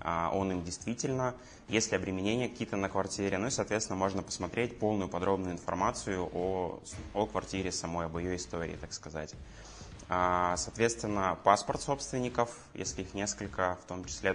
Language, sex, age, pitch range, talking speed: Russian, male, 20-39, 90-100 Hz, 145 wpm